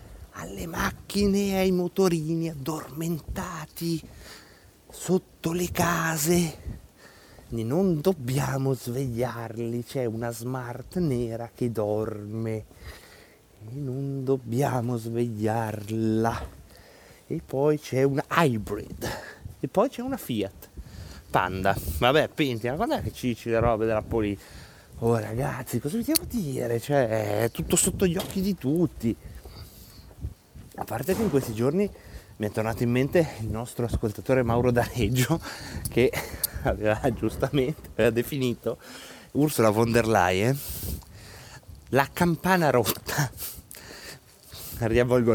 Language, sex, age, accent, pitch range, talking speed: Italian, male, 30-49, native, 110-165 Hz, 115 wpm